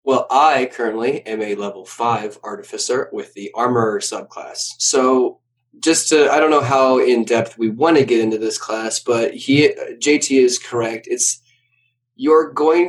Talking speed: 170 wpm